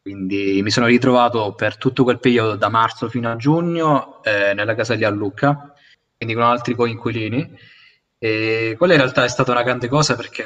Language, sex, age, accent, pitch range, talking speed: Italian, male, 20-39, native, 110-130 Hz, 185 wpm